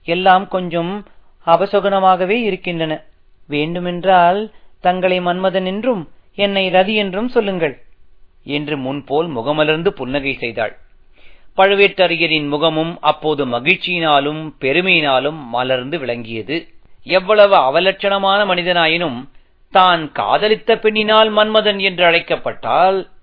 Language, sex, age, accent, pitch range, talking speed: Tamil, male, 40-59, native, 145-185 Hz, 85 wpm